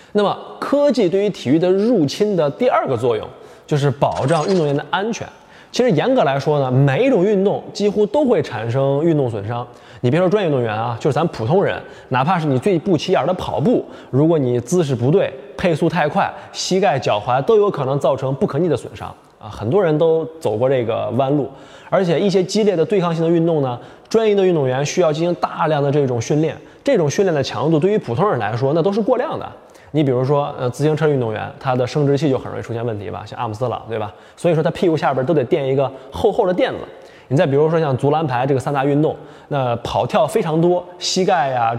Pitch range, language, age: 130-185 Hz, Chinese, 20-39